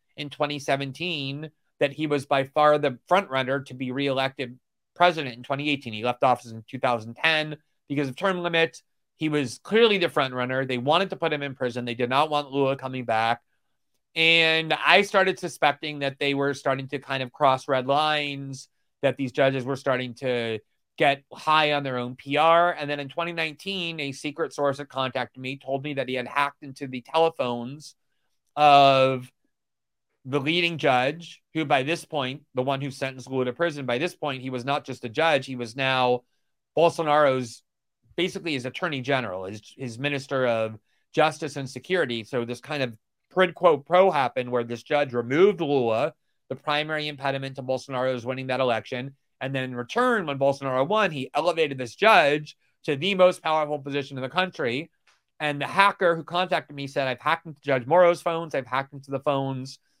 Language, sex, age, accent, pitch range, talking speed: English, male, 30-49, American, 130-155 Hz, 185 wpm